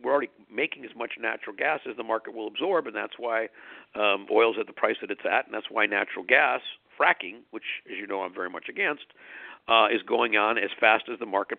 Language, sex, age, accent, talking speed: English, male, 50-69, American, 240 wpm